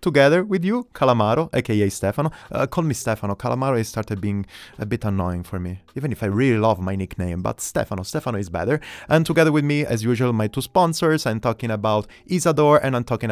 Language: English